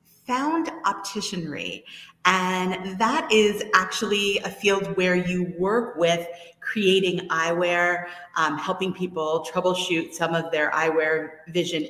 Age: 30-49